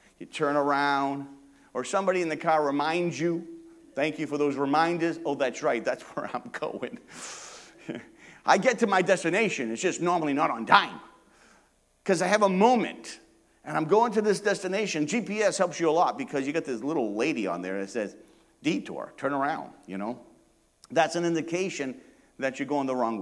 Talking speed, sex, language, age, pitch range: 185 wpm, male, English, 50-69, 130-195 Hz